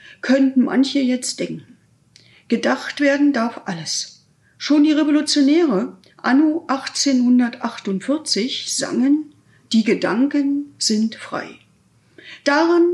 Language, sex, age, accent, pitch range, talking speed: German, female, 50-69, German, 240-290 Hz, 90 wpm